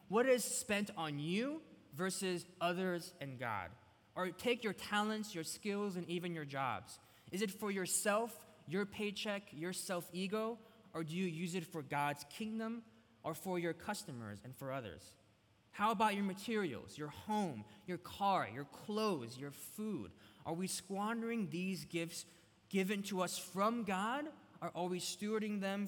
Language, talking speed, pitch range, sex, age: English, 160 wpm, 140-205 Hz, male, 20-39